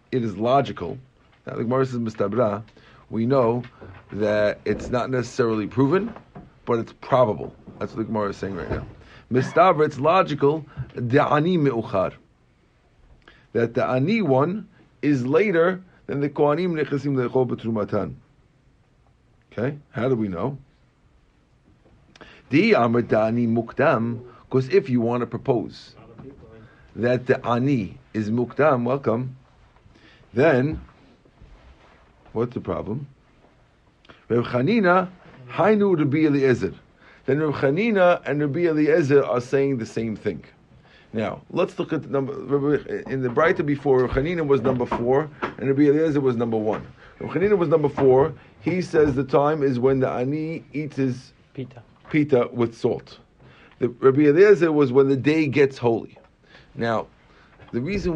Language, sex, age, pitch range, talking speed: English, male, 50-69, 120-145 Hz, 125 wpm